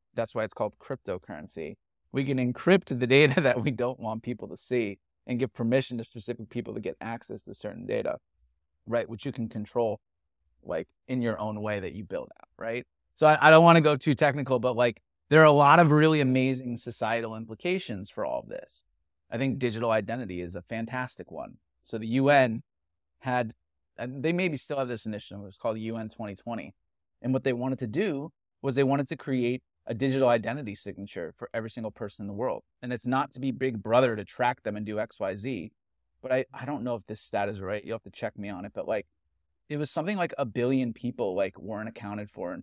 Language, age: English, 30-49